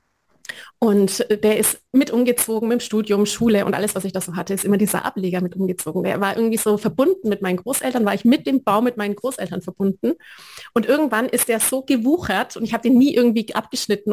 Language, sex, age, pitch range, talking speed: German, female, 30-49, 200-245 Hz, 220 wpm